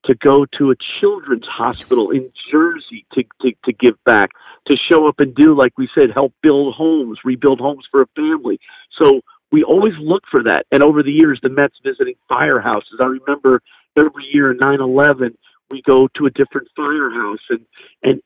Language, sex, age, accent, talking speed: English, male, 50-69, American, 190 wpm